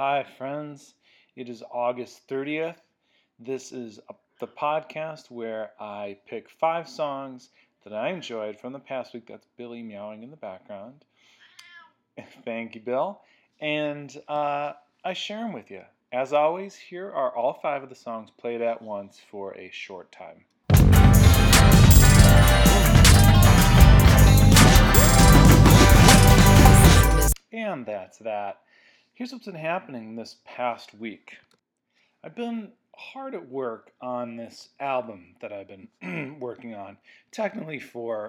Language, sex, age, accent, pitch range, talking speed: English, male, 40-59, American, 105-150 Hz, 125 wpm